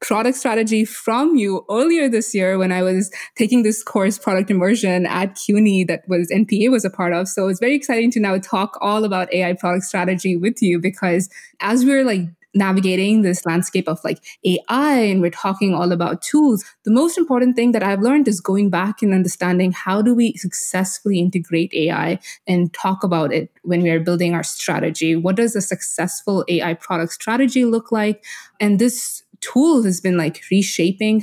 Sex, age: female, 20-39